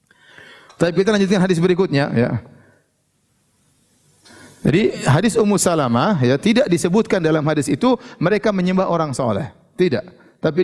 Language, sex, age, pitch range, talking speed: Indonesian, male, 30-49, 140-175 Hz, 125 wpm